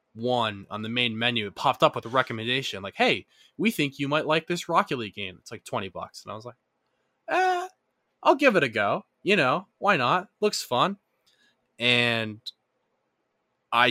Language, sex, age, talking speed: English, male, 20-39, 190 wpm